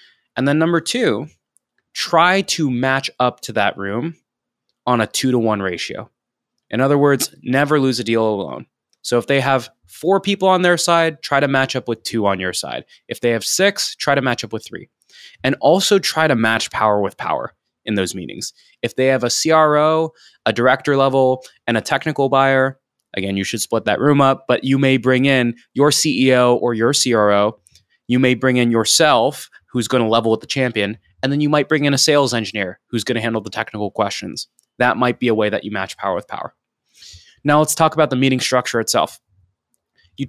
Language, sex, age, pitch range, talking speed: English, male, 20-39, 115-150 Hz, 210 wpm